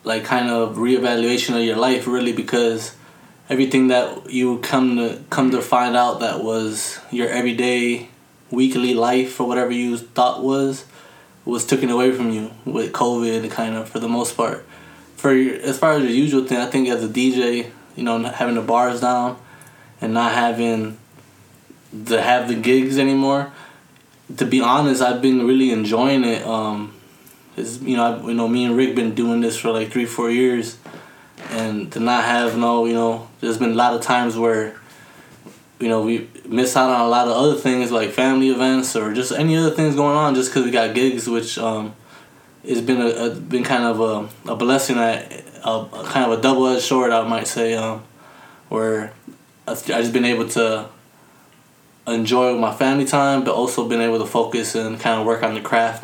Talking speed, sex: 195 wpm, male